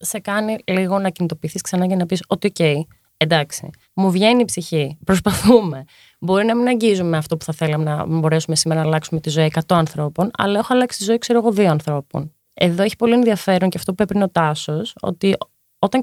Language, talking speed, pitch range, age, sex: Greek, 200 wpm, 160-225 Hz, 20-39, female